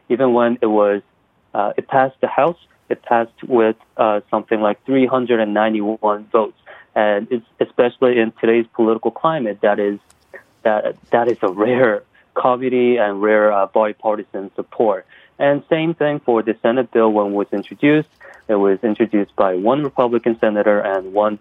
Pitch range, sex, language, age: 105-125 Hz, male, Korean, 30-49